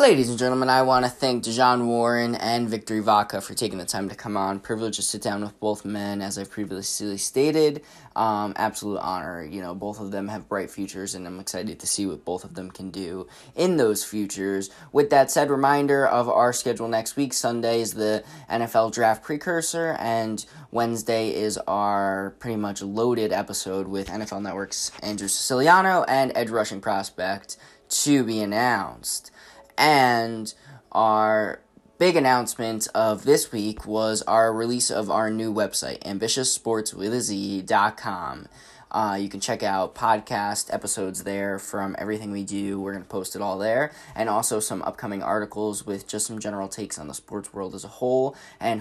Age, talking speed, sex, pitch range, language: 10-29, 175 wpm, male, 100-120 Hz, English